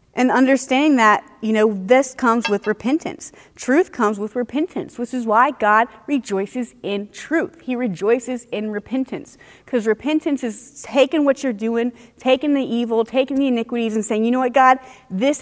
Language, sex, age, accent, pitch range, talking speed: English, female, 30-49, American, 220-270 Hz, 170 wpm